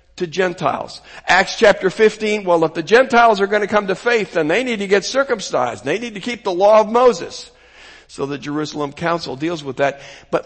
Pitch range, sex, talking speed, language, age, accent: 145-195 Hz, male, 210 wpm, English, 60-79, American